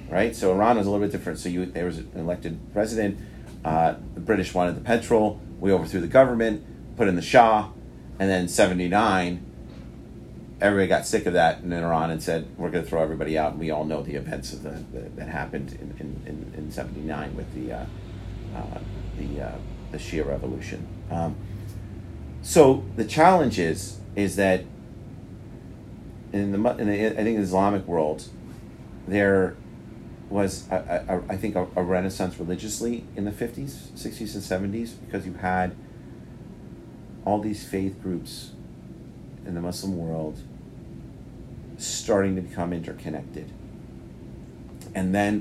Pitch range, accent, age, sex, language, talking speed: 85-105 Hz, American, 40-59, male, English, 165 wpm